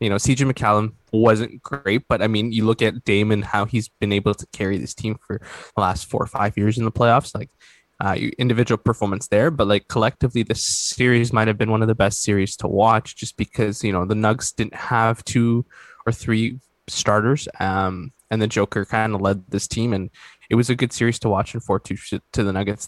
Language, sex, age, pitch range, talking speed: English, male, 20-39, 100-120 Hz, 225 wpm